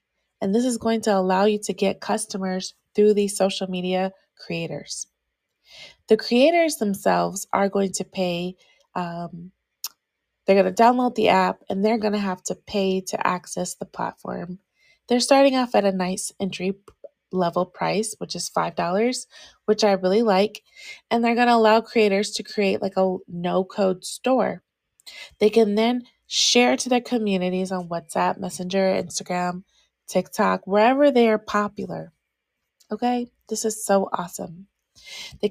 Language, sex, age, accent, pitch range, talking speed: English, female, 20-39, American, 190-230 Hz, 145 wpm